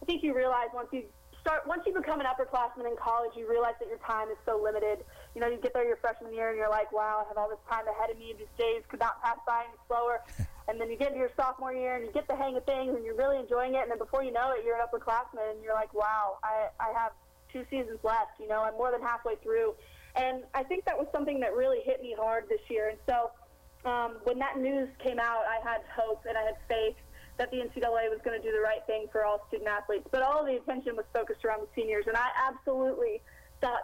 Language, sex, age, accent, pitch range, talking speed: English, female, 20-39, American, 225-265 Hz, 270 wpm